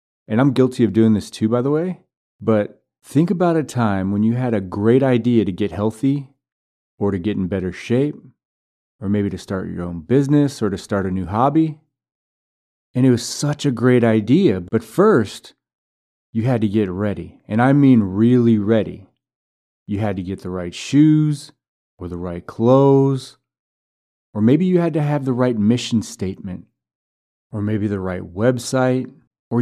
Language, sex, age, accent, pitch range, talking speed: English, male, 30-49, American, 95-125 Hz, 180 wpm